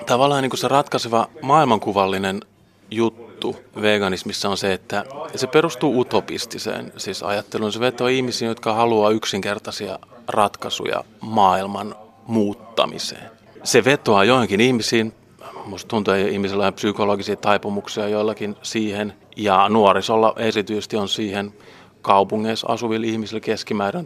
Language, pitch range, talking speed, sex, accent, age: Finnish, 105-120 Hz, 105 wpm, male, native, 30-49